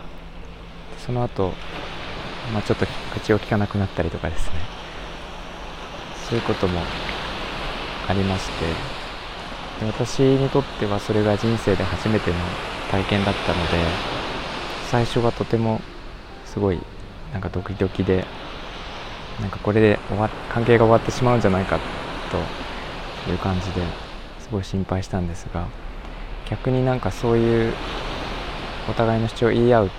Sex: male